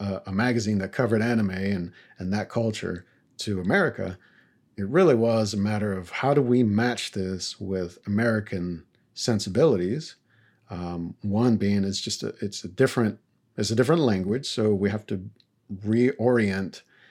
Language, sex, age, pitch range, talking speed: English, male, 50-69, 100-120 Hz, 150 wpm